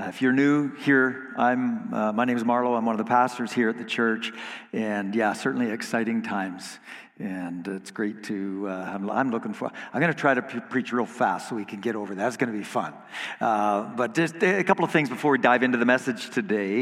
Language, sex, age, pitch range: English, male, 50-69, 110-150 Hz